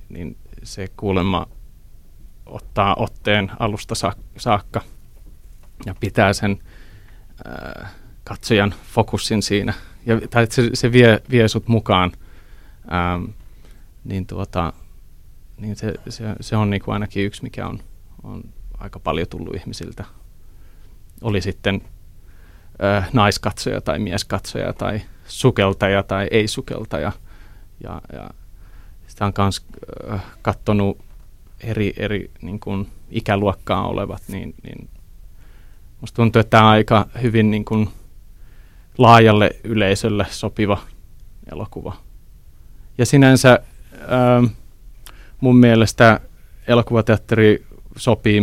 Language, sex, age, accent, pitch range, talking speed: Finnish, male, 30-49, native, 95-110 Hz, 105 wpm